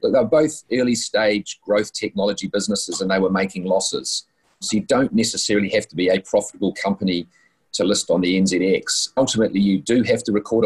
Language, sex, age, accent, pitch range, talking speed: English, male, 30-49, Australian, 95-115 Hz, 185 wpm